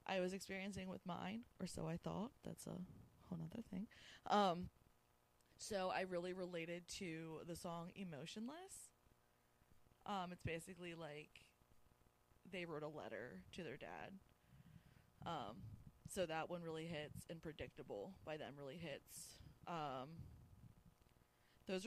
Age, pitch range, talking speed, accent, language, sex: 20-39, 120-180 Hz, 130 wpm, American, English, female